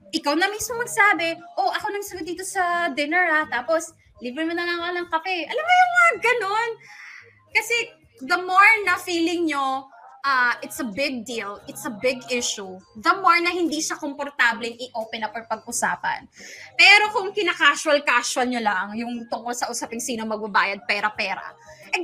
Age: 20-39